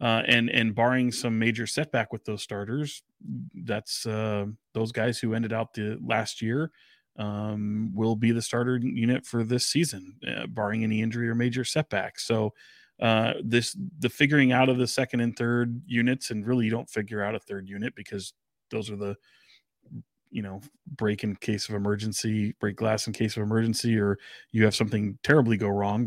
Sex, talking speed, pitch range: male, 185 wpm, 105-120 Hz